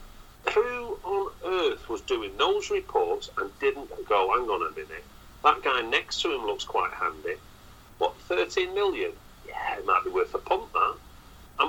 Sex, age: male, 40-59